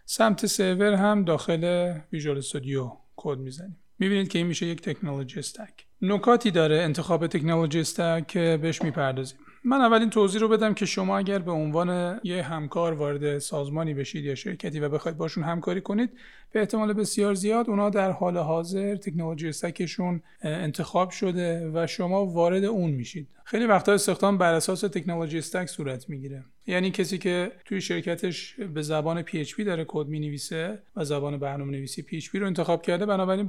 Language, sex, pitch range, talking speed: Persian, male, 160-200 Hz, 160 wpm